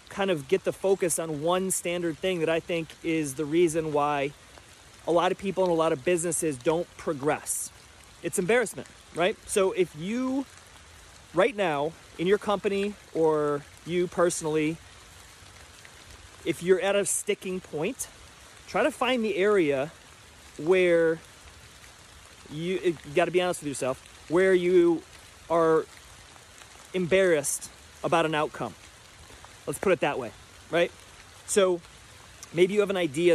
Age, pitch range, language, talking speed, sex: 30-49, 150-180 Hz, English, 140 wpm, male